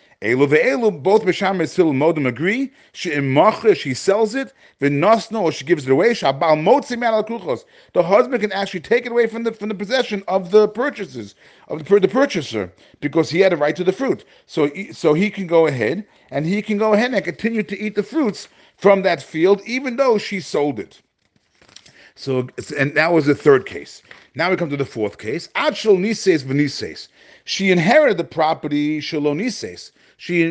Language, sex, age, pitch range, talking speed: English, male, 40-59, 145-210 Hz, 140 wpm